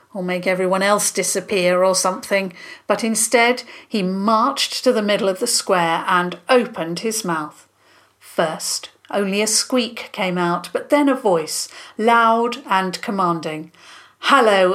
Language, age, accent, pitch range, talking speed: English, 50-69, British, 190-285 Hz, 140 wpm